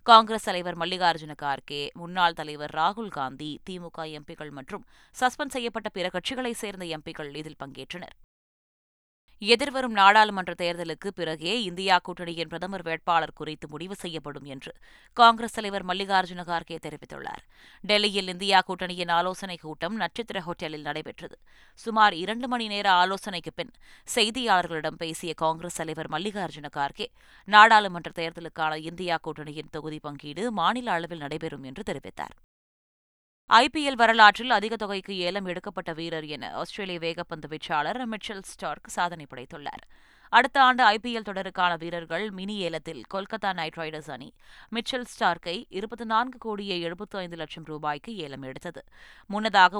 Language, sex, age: Tamil, female, 20-39